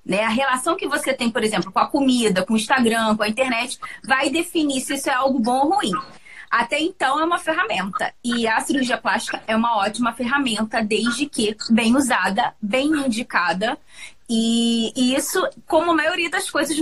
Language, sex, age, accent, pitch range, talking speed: Portuguese, female, 20-39, Brazilian, 210-275 Hz, 190 wpm